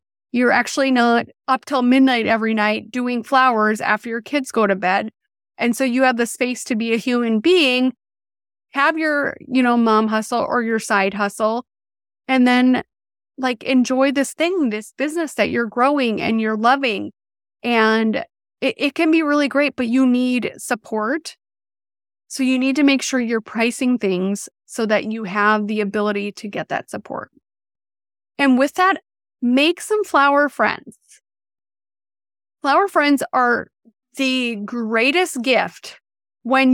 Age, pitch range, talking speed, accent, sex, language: 30-49, 220-285 Hz, 155 wpm, American, female, English